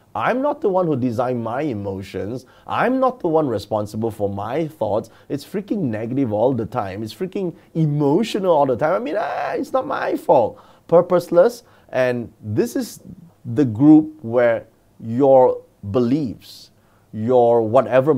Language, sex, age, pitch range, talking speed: English, male, 30-49, 105-145 Hz, 150 wpm